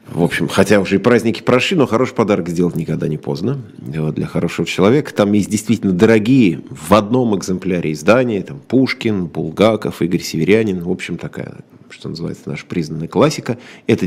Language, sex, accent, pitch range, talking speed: Russian, male, native, 75-105 Hz, 165 wpm